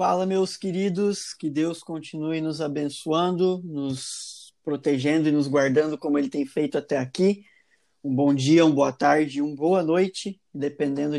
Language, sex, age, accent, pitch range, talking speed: Portuguese, male, 20-39, Brazilian, 140-160 Hz, 155 wpm